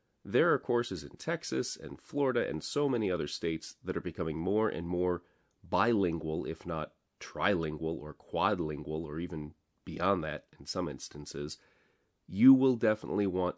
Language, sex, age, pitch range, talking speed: English, male, 30-49, 80-110 Hz, 155 wpm